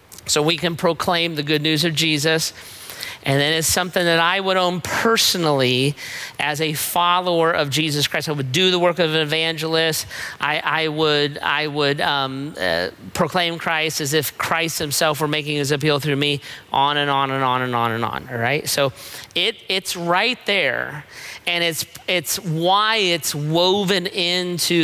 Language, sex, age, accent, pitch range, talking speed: English, male, 40-59, American, 140-170 Hz, 180 wpm